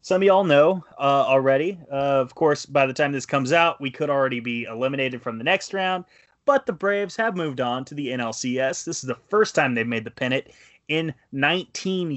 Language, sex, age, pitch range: English, male, 20-39, 120-170 Hz